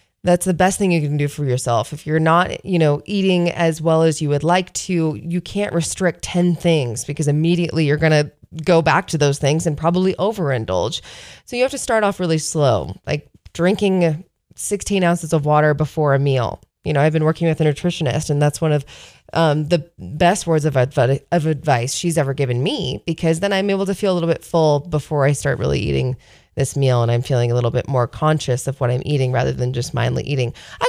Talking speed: 225 wpm